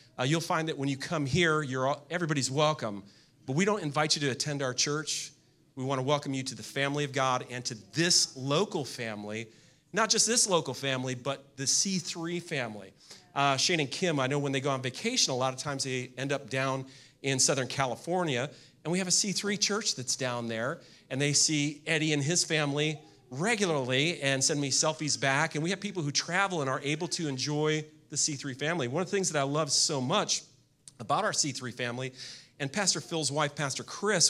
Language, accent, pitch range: English, American, 130-160 Hz